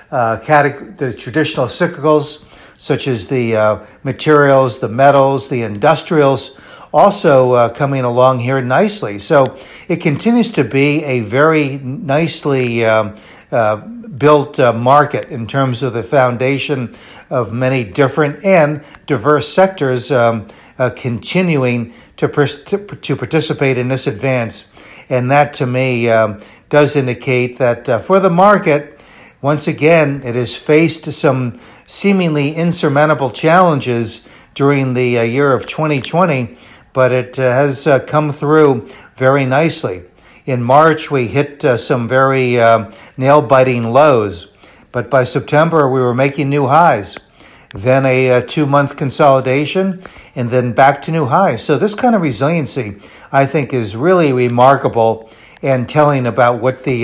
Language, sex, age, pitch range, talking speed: English, male, 60-79, 125-150 Hz, 135 wpm